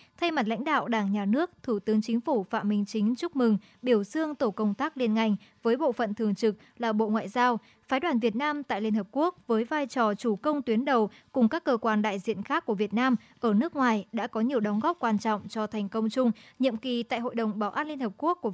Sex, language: male, Vietnamese